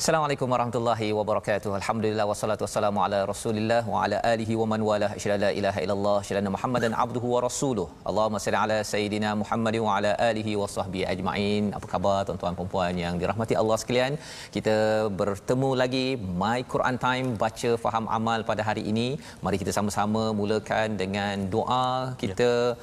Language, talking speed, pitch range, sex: Malayalam, 165 wpm, 100-120 Hz, male